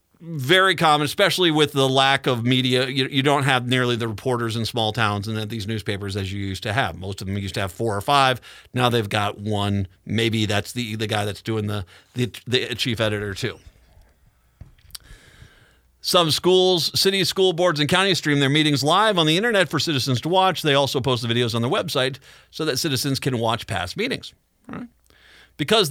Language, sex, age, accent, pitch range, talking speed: English, male, 40-59, American, 120-180 Hz, 205 wpm